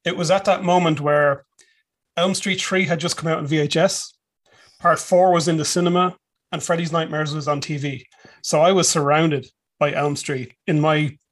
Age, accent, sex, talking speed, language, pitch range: 30-49, Irish, male, 190 wpm, English, 155-185 Hz